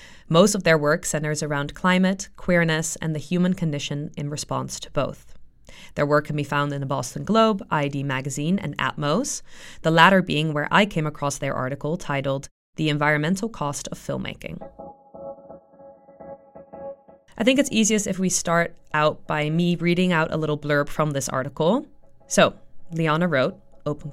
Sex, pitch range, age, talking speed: female, 145-175 Hz, 20-39, 165 wpm